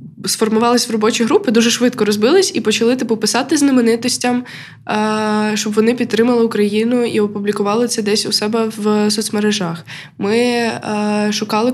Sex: female